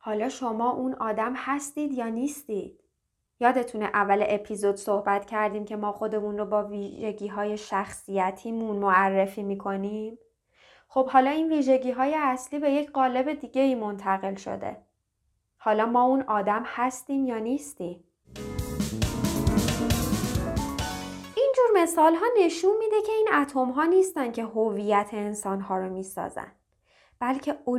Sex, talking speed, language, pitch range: female, 125 wpm, Persian, 215-290 Hz